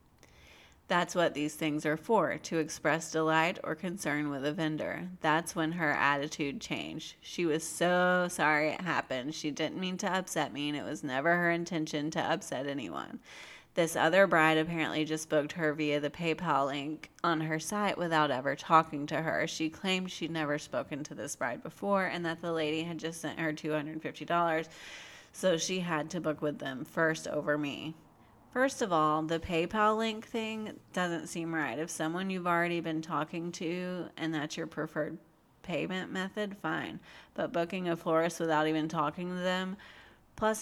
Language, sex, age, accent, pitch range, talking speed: English, female, 30-49, American, 150-175 Hz, 180 wpm